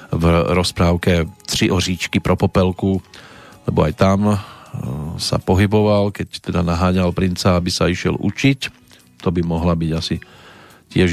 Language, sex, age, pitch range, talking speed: Slovak, male, 40-59, 90-110 Hz, 135 wpm